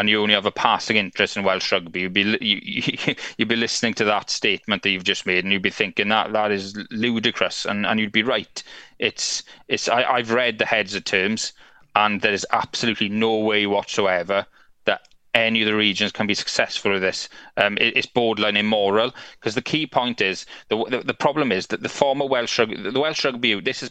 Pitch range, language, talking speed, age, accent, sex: 100-110 Hz, English, 220 wpm, 30-49, British, male